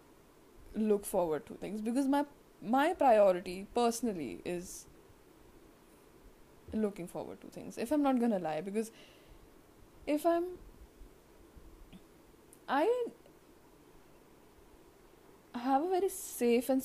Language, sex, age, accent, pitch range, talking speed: English, female, 10-29, Indian, 210-270 Hz, 100 wpm